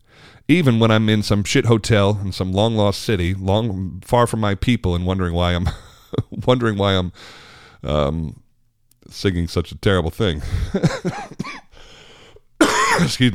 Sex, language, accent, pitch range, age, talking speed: male, English, American, 80-110 Hz, 40-59, 135 wpm